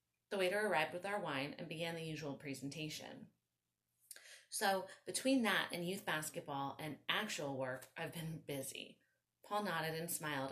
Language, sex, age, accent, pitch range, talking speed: English, female, 30-49, American, 140-195 Hz, 155 wpm